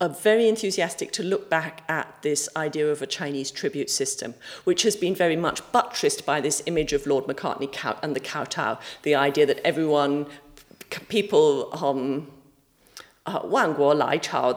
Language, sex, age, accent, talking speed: English, female, 50-69, British, 155 wpm